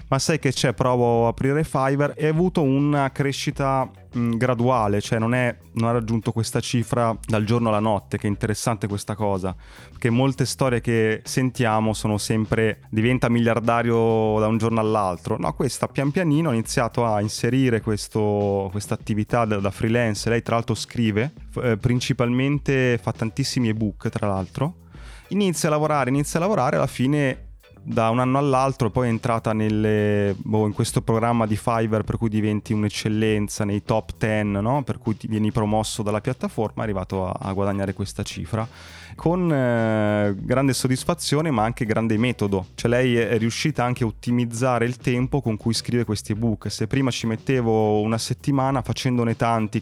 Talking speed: 170 wpm